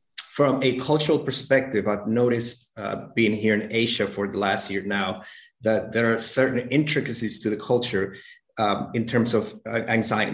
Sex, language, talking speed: male, English, 170 wpm